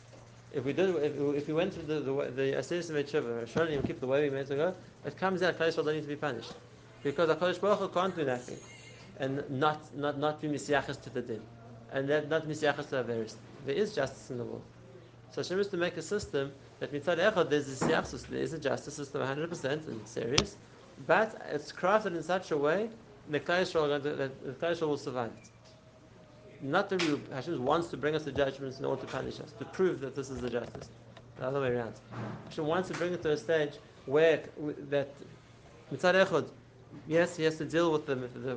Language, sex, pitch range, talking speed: English, male, 130-160 Hz, 215 wpm